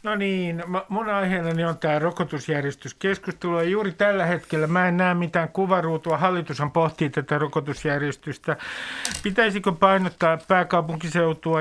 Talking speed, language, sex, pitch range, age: 120 wpm, Finnish, male, 145-190 Hz, 60-79